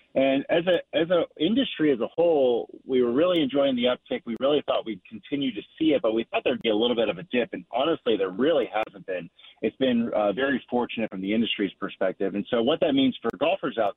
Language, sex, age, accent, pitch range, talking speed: English, male, 40-59, American, 110-140 Hz, 245 wpm